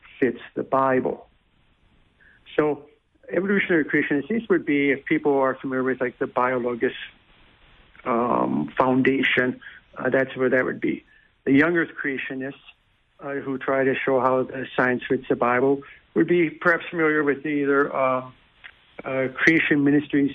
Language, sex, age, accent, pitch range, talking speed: English, male, 60-79, American, 130-150 Hz, 145 wpm